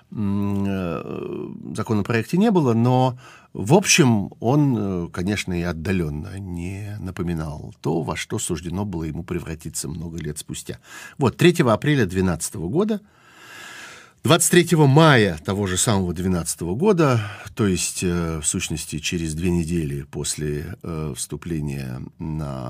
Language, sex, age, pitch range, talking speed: Russian, male, 50-69, 85-125 Hz, 120 wpm